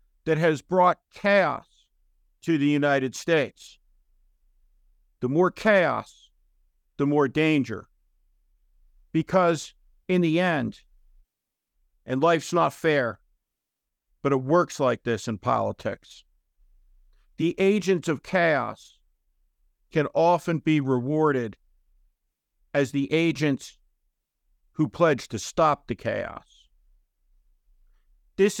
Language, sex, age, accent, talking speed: English, male, 50-69, American, 100 wpm